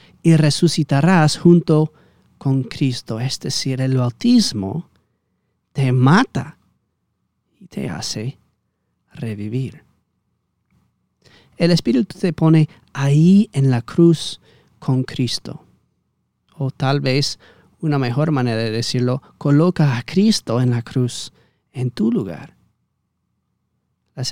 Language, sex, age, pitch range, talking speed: Spanish, male, 40-59, 125-155 Hz, 105 wpm